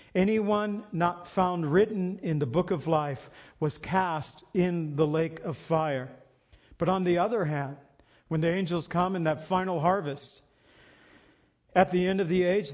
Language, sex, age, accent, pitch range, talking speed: English, male, 50-69, American, 150-185 Hz, 165 wpm